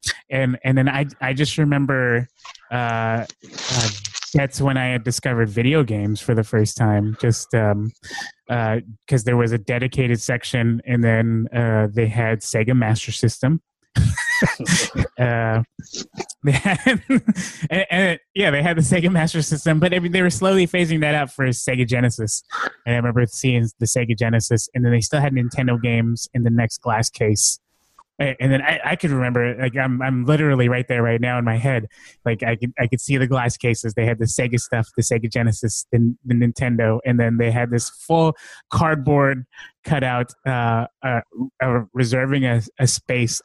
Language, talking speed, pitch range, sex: English, 180 wpm, 115-135 Hz, male